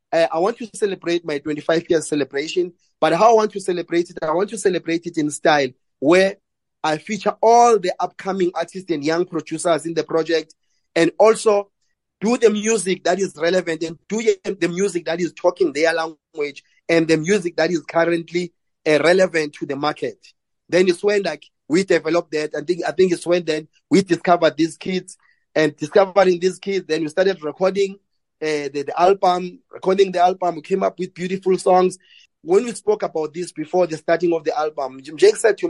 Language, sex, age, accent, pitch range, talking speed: English, male, 30-49, South African, 155-190 Hz, 195 wpm